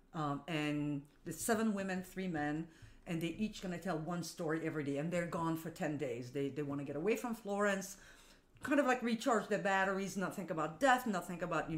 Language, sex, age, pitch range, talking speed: English, female, 50-69, 145-190 Hz, 220 wpm